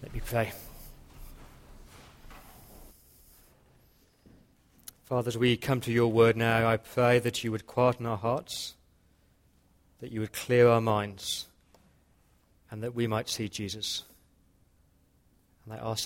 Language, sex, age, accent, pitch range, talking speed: English, male, 40-59, British, 105-135 Hz, 125 wpm